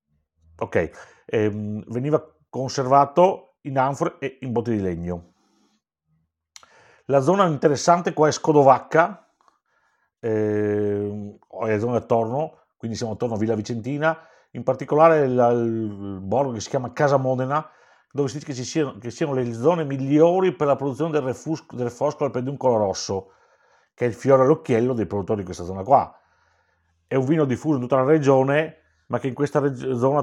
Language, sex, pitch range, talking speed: Italian, male, 105-145 Hz, 165 wpm